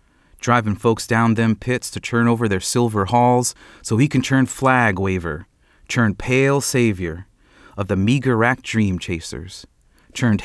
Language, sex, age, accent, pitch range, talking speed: English, male, 30-49, American, 90-115 Hz, 155 wpm